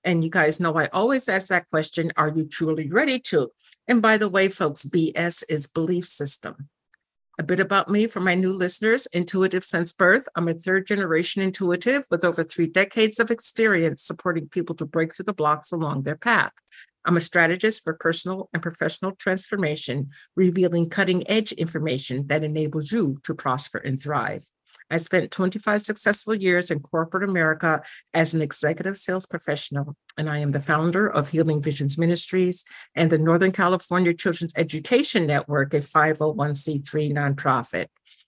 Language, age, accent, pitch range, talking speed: English, 50-69, American, 155-190 Hz, 165 wpm